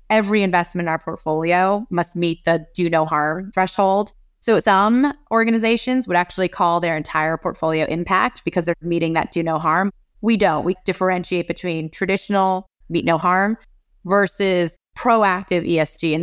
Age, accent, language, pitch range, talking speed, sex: 20-39, American, English, 160-195 Hz, 155 wpm, female